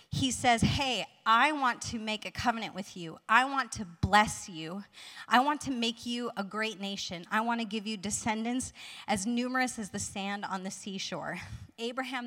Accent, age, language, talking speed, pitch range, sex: American, 30-49, English, 190 wpm, 185-230 Hz, female